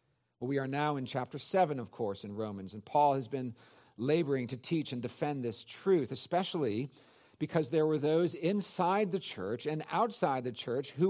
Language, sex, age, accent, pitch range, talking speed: English, male, 50-69, American, 145-200 Hz, 185 wpm